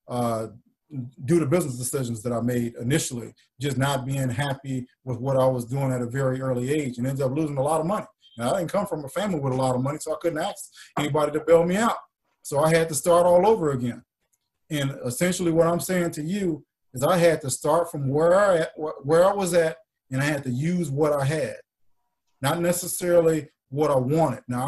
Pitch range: 130-165 Hz